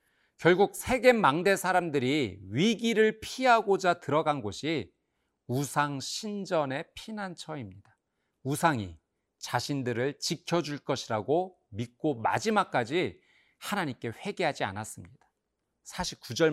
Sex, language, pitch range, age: male, Korean, 120-180 Hz, 40-59